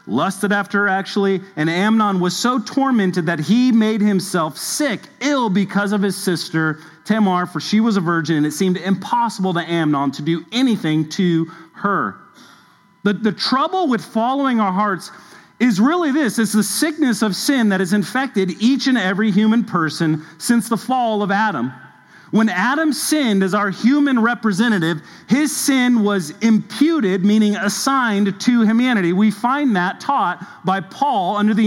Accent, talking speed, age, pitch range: American, 165 wpm, 40-59, 190-245 Hz